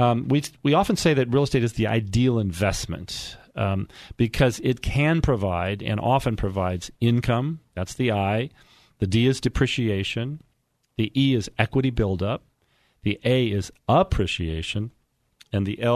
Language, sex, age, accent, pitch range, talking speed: English, male, 40-59, American, 100-125 Hz, 145 wpm